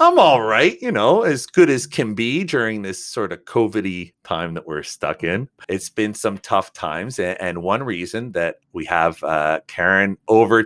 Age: 40-59